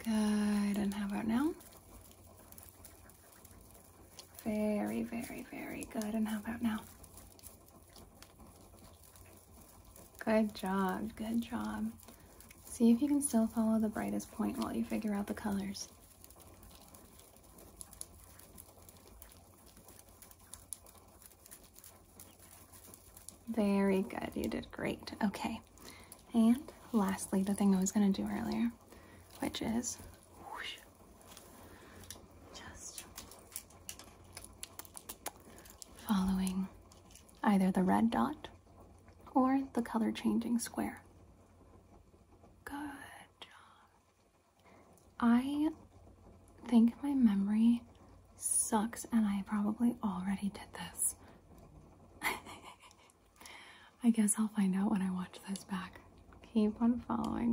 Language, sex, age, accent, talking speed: English, female, 30-49, American, 90 wpm